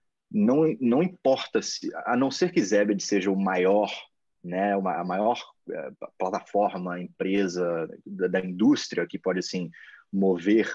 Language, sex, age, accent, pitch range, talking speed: Portuguese, male, 20-39, Brazilian, 95-140 Hz, 135 wpm